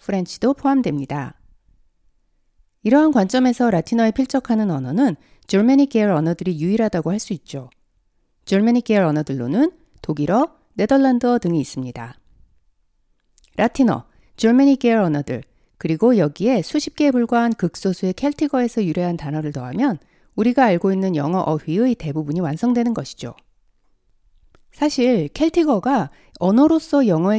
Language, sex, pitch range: Korean, female, 155-250 Hz